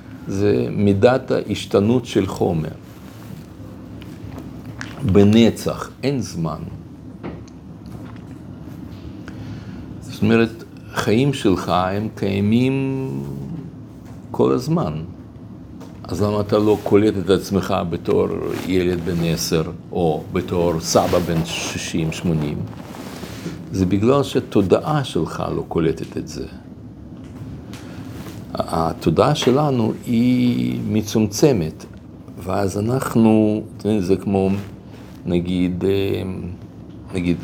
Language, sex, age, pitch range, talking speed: Hebrew, male, 50-69, 90-120 Hz, 80 wpm